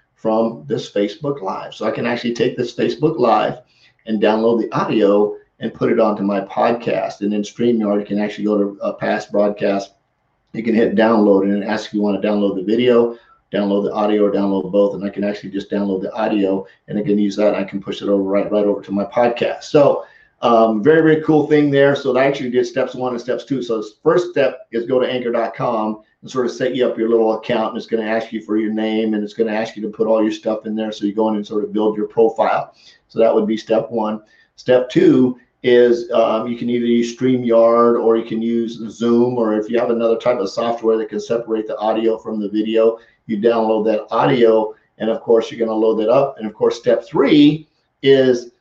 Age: 50-69